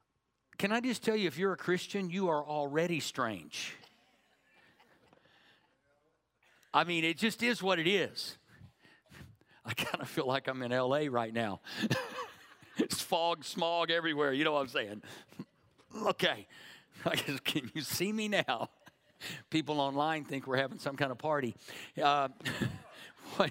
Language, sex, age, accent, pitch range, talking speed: English, male, 50-69, American, 130-165 Hz, 145 wpm